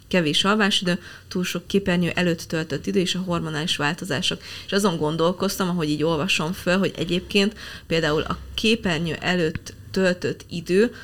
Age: 20-39